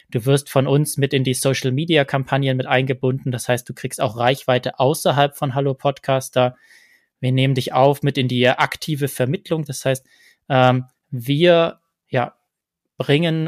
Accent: German